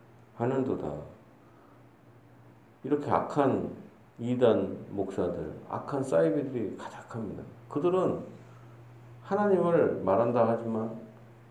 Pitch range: 100-125 Hz